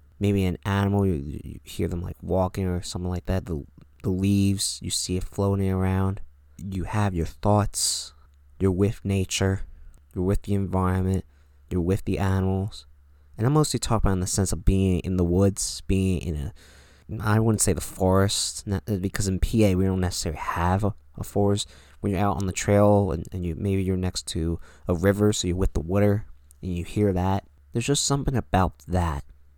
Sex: male